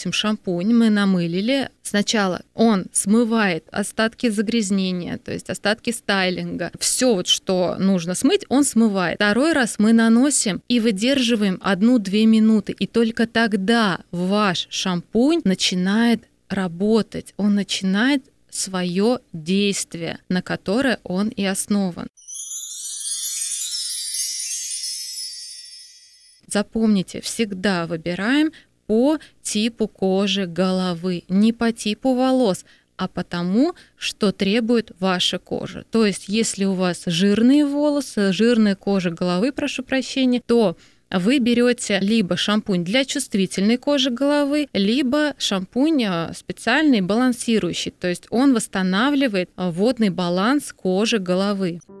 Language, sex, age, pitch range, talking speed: Russian, female, 20-39, 185-235 Hz, 105 wpm